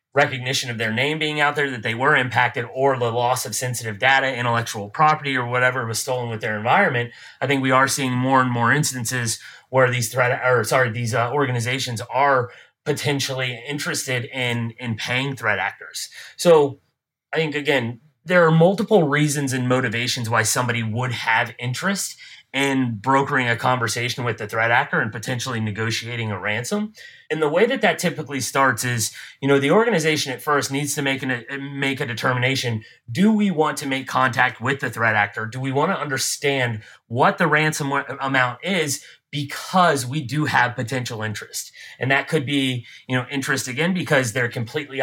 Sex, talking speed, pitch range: male, 185 wpm, 120-145 Hz